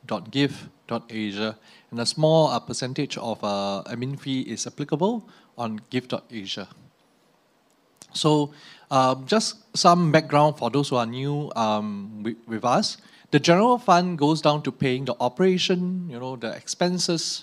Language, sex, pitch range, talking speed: English, male, 115-160 Hz, 155 wpm